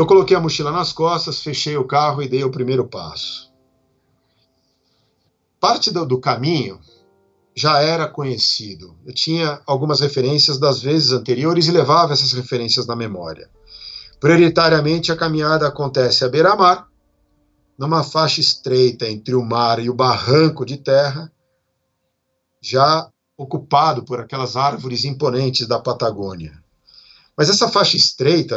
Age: 50-69